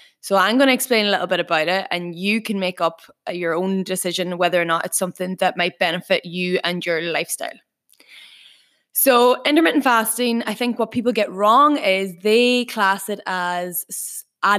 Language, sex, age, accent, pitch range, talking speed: English, female, 20-39, Irish, 180-220 Hz, 185 wpm